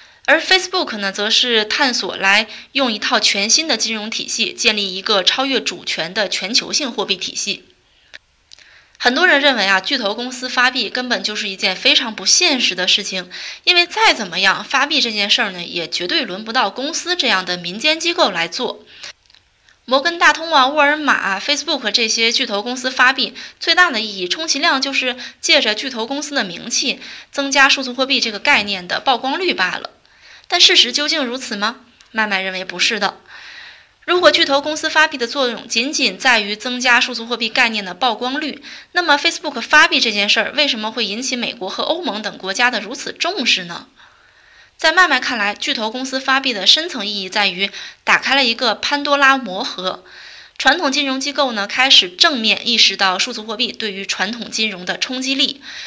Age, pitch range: 20-39, 210-285 Hz